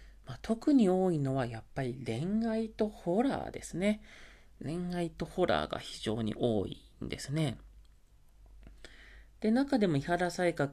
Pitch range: 115-195 Hz